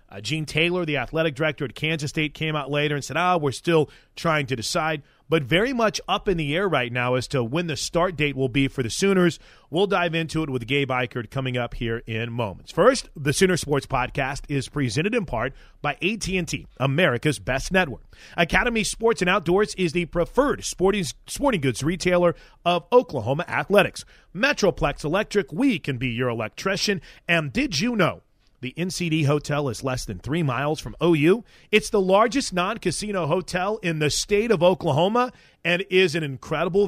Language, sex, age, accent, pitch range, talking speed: English, male, 30-49, American, 135-185 Hz, 185 wpm